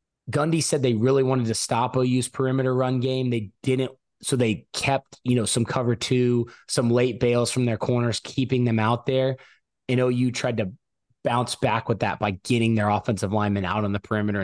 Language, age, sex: English, 20-39, male